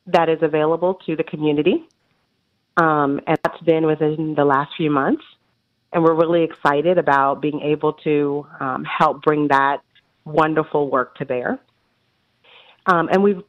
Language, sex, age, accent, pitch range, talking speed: English, female, 30-49, American, 150-180 Hz, 150 wpm